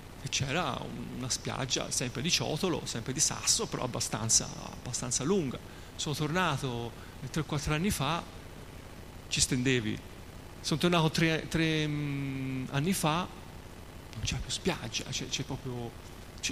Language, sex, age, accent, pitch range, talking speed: Italian, male, 30-49, native, 95-140 Hz, 130 wpm